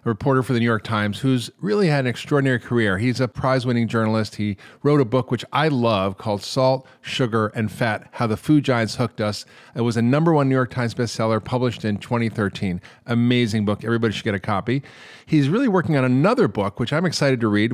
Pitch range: 115-150 Hz